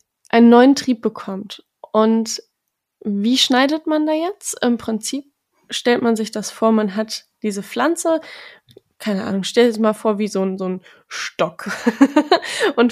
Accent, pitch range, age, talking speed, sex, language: German, 210-250 Hz, 20-39, 160 wpm, female, German